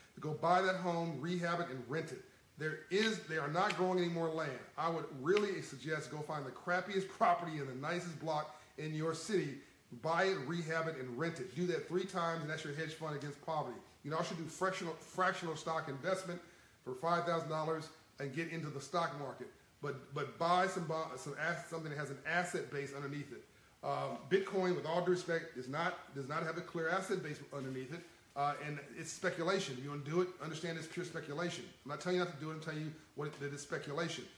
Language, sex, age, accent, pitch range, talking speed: English, male, 40-59, American, 150-180 Hz, 220 wpm